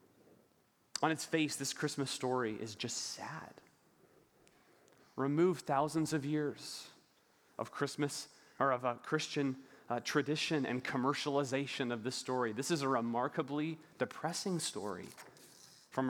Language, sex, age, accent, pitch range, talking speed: English, male, 30-49, American, 110-140 Hz, 125 wpm